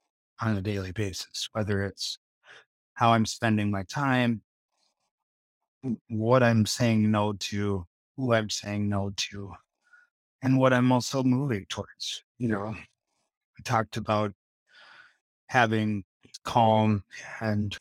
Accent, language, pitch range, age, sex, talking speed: American, English, 105-120 Hz, 30-49, male, 120 wpm